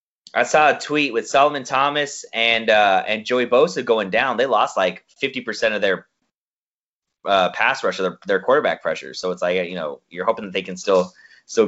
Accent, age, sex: American, 20-39, male